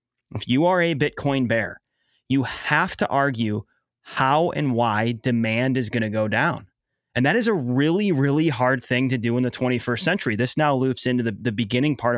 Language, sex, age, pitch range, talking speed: English, male, 30-49, 120-150 Hz, 200 wpm